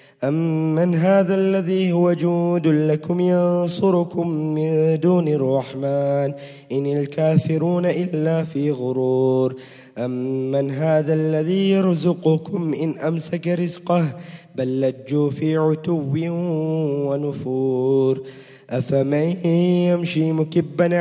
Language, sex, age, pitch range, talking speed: English, male, 20-39, 145-175 Hz, 85 wpm